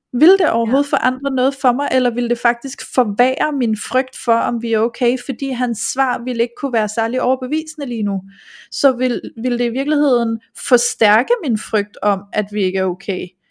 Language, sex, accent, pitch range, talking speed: Danish, female, native, 220-260 Hz, 200 wpm